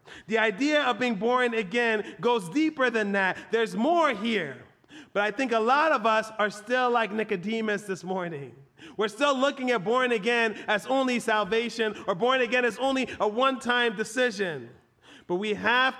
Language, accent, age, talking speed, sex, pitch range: English, American, 30-49, 175 wpm, male, 195-245 Hz